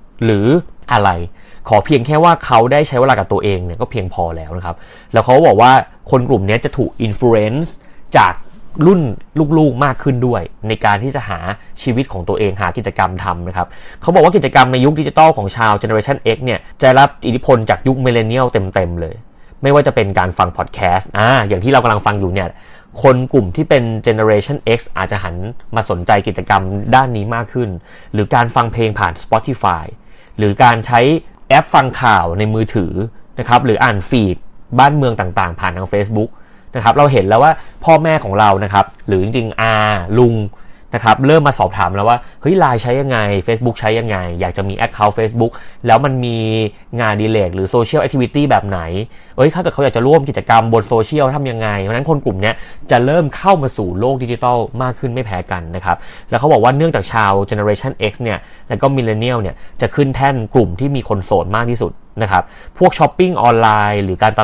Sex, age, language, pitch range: male, 30-49, Thai, 100-130 Hz